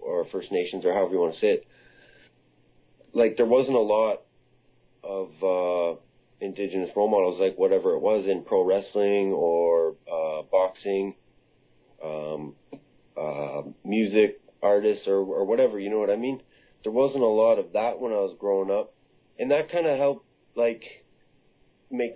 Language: English